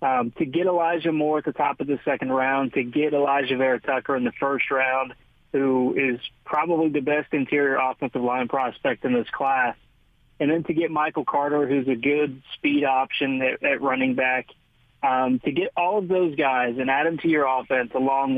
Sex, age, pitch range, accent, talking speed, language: male, 30-49, 130-160 Hz, American, 200 wpm, English